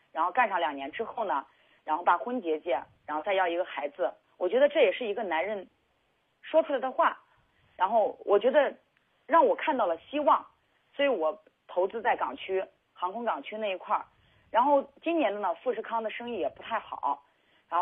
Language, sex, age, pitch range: Chinese, female, 30-49, 165-245 Hz